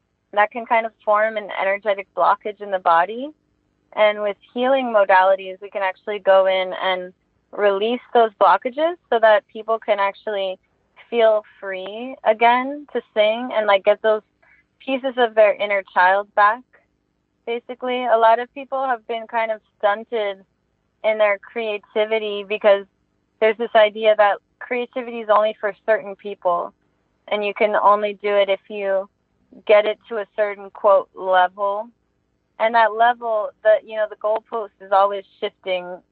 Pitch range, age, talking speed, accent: 195-225 Hz, 20-39, 155 wpm, American